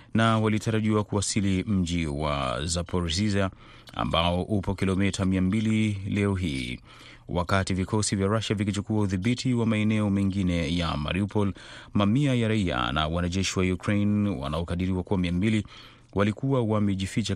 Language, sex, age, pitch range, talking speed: Swahili, male, 30-49, 90-110 Hz, 120 wpm